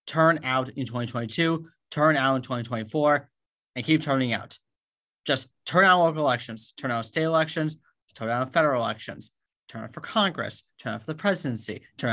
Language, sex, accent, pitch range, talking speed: English, male, American, 135-165 Hz, 175 wpm